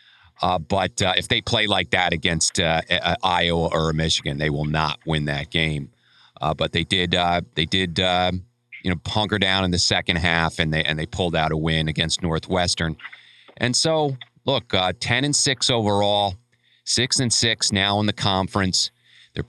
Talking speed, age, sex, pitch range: 190 wpm, 40-59, male, 90-115 Hz